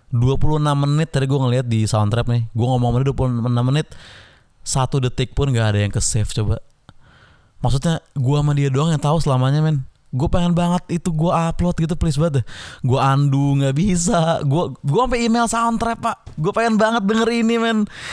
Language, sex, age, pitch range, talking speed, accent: Indonesian, male, 20-39, 130-180 Hz, 185 wpm, native